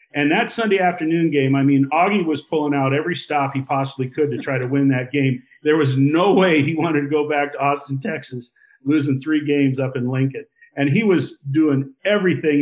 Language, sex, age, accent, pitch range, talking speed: English, male, 40-59, American, 135-160 Hz, 215 wpm